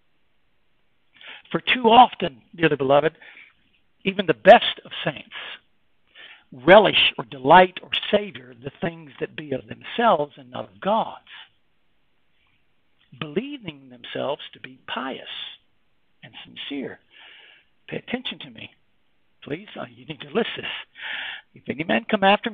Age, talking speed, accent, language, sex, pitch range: 60-79, 125 wpm, American, English, male, 145-225 Hz